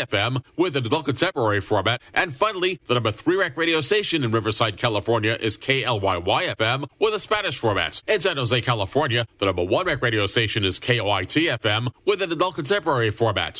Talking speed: 185 wpm